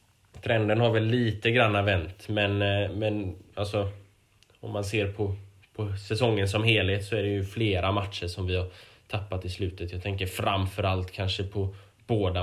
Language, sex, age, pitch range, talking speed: Swedish, male, 10-29, 95-105 Hz, 170 wpm